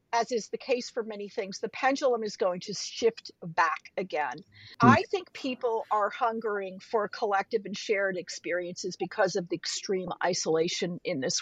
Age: 50-69